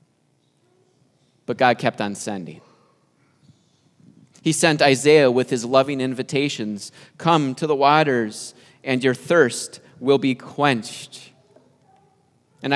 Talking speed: 110 wpm